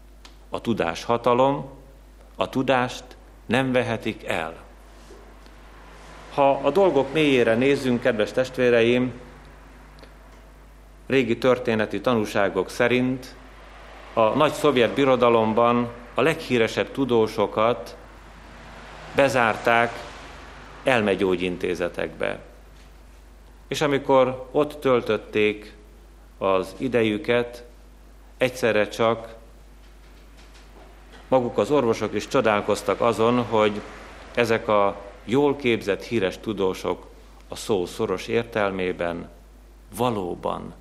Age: 40-59